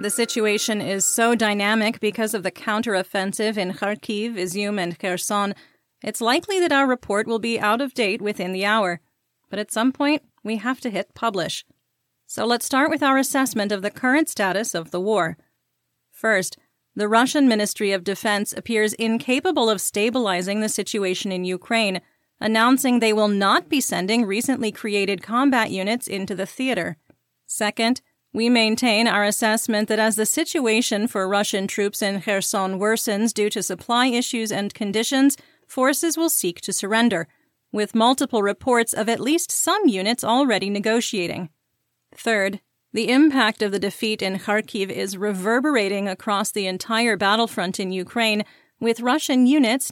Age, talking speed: 30-49, 155 wpm